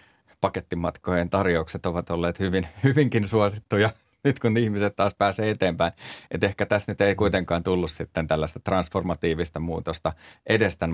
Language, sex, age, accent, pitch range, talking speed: Finnish, male, 30-49, native, 80-95 Hz, 135 wpm